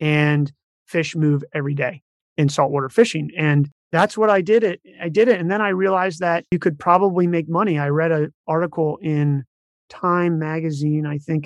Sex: male